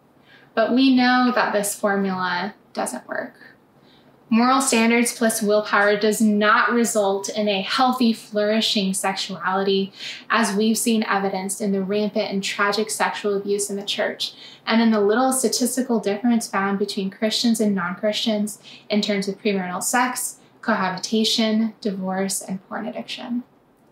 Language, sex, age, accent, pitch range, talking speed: English, female, 10-29, American, 200-240 Hz, 140 wpm